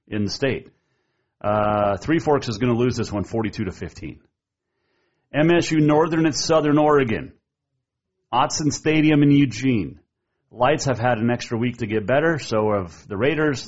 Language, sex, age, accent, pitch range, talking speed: English, male, 40-59, American, 105-140 Hz, 155 wpm